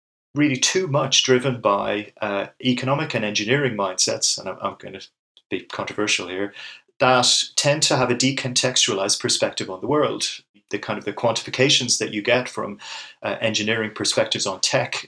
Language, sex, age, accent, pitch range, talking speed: English, male, 30-49, British, 105-130 Hz, 165 wpm